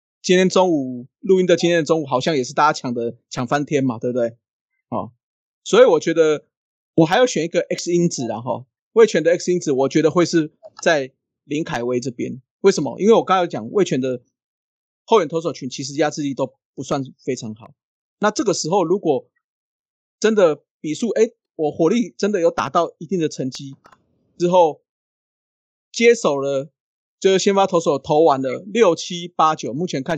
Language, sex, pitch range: Chinese, male, 135-180 Hz